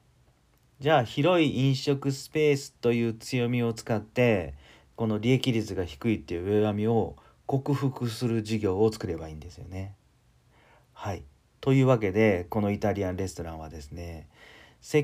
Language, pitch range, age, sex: Japanese, 85-130 Hz, 40-59, male